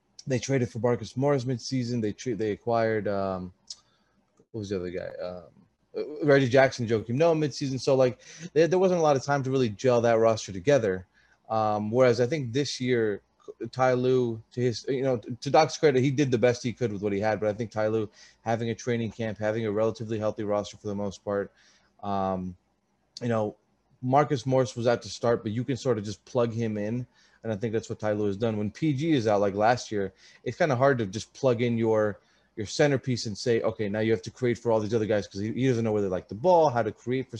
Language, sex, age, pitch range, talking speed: Hebrew, male, 20-39, 105-125 Hz, 240 wpm